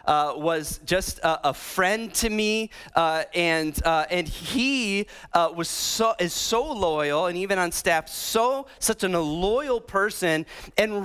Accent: American